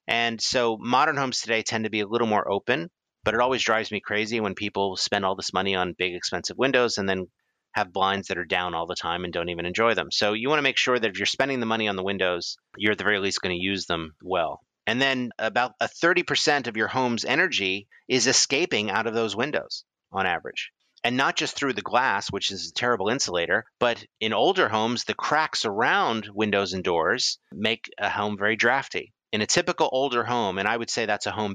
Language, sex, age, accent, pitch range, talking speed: English, male, 30-49, American, 95-120 Hz, 235 wpm